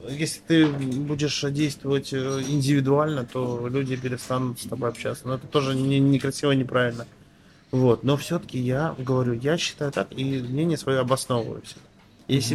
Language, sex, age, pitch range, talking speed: Russian, male, 20-39, 120-145 Hz, 150 wpm